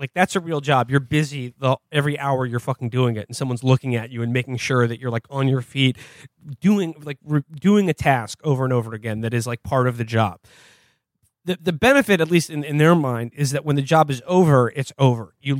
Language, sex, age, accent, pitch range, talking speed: English, male, 30-49, American, 120-150 Hz, 245 wpm